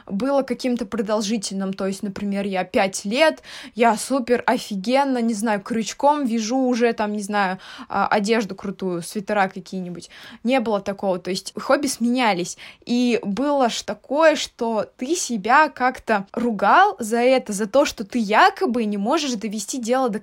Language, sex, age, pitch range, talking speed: Russian, female, 20-39, 210-260 Hz, 155 wpm